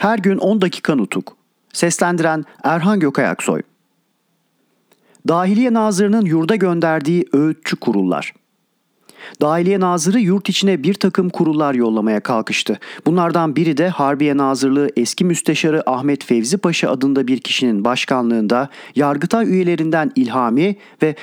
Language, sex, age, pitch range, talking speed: Turkish, male, 40-59, 140-185 Hz, 115 wpm